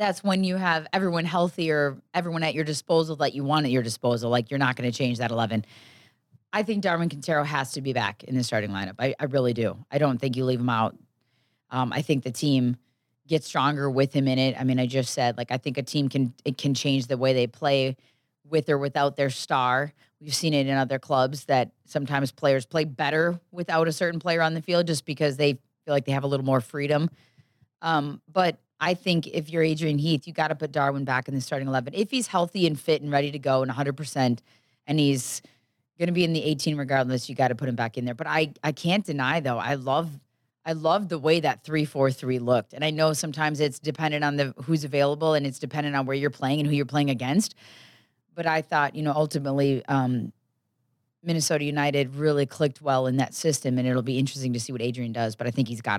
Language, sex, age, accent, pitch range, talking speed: English, female, 20-39, American, 130-155 Hz, 240 wpm